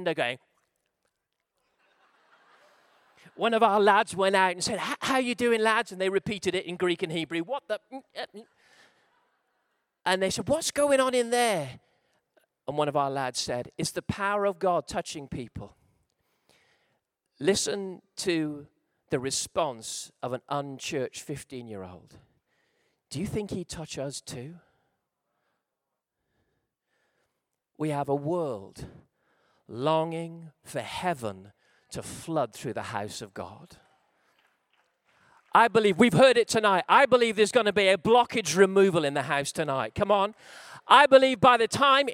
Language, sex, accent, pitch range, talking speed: English, male, British, 150-220 Hz, 145 wpm